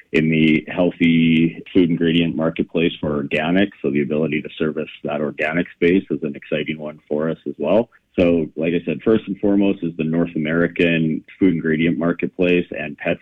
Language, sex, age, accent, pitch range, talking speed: English, male, 30-49, American, 80-90 Hz, 180 wpm